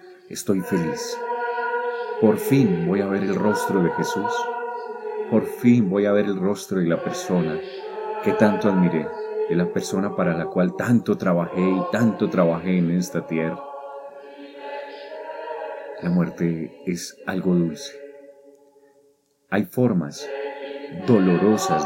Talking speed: 125 wpm